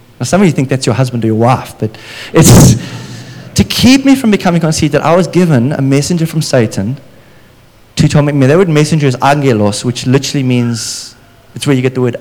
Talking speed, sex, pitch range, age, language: 210 wpm, male, 120-175 Hz, 20-39, English